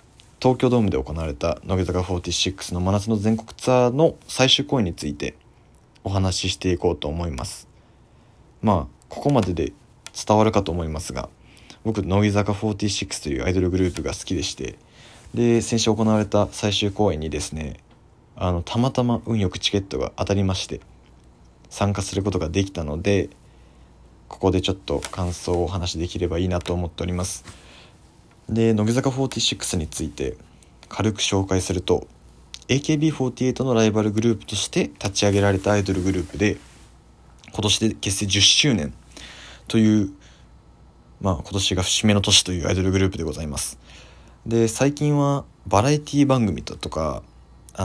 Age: 20-39